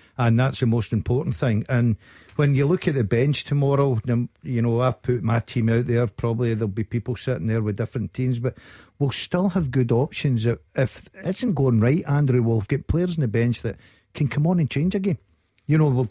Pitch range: 115-140 Hz